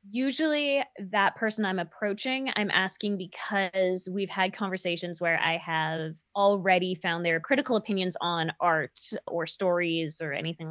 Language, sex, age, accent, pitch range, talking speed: English, female, 20-39, American, 170-215 Hz, 140 wpm